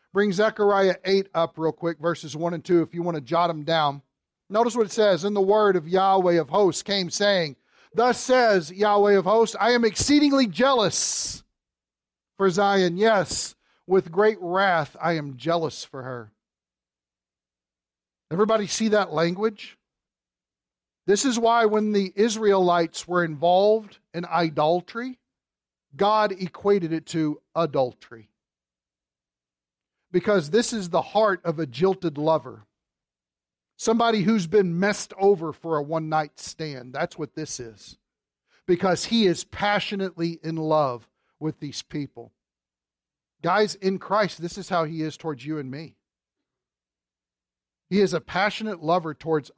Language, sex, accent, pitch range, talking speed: English, male, American, 135-200 Hz, 145 wpm